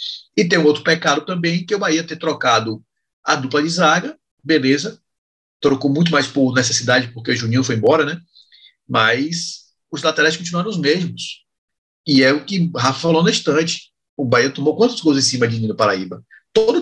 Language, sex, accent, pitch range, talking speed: Portuguese, male, Brazilian, 125-170 Hz, 185 wpm